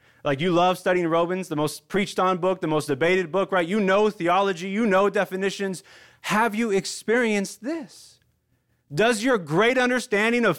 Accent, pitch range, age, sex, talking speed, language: American, 120-180 Hz, 30-49, male, 170 wpm, English